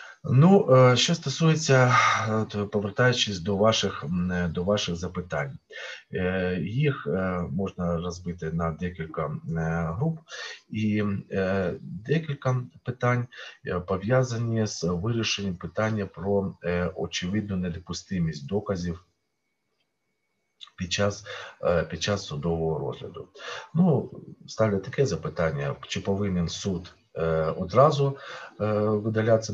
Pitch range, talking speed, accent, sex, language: 85-115 Hz, 85 wpm, native, male, Ukrainian